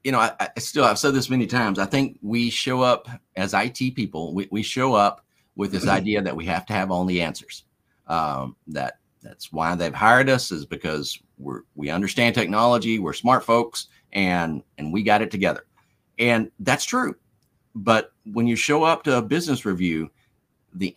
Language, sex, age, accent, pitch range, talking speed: English, male, 50-69, American, 90-125 Hz, 195 wpm